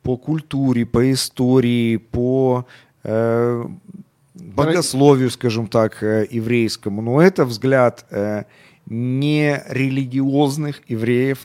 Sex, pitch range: male, 110-145 Hz